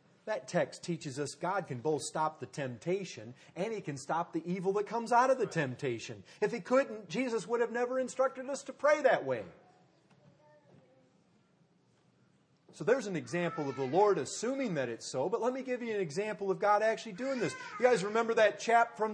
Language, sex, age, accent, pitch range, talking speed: English, male, 40-59, American, 170-250 Hz, 200 wpm